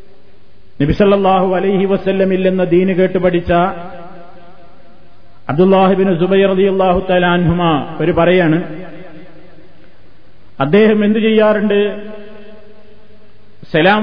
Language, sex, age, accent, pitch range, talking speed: Malayalam, male, 50-69, native, 155-190 Hz, 60 wpm